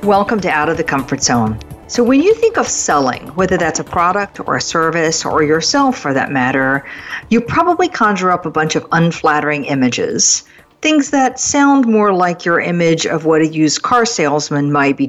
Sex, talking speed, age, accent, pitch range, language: female, 195 wpm, 50-69, American, 150-225 Hz, English